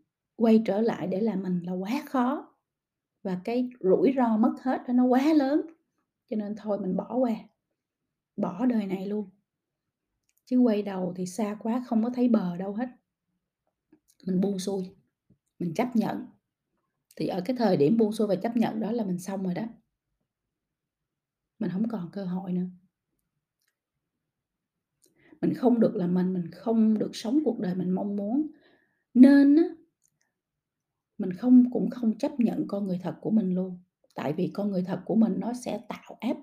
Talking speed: 175 wpm